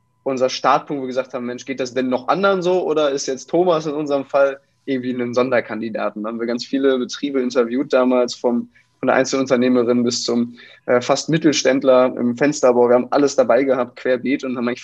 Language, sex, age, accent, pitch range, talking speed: German, male, 20-39, German, 120-140 Hz, 205 wpm